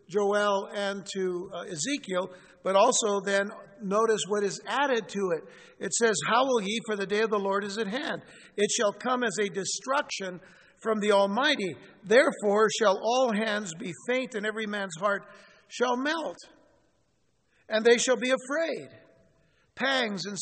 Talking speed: 165 wpm